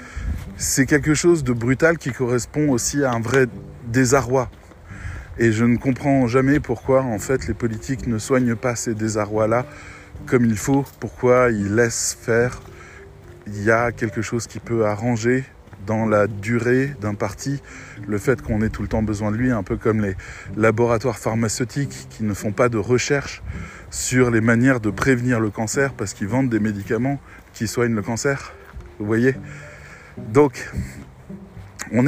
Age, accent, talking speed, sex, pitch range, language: 20-39, French, 165 wpm, male, 100-130 Hz, French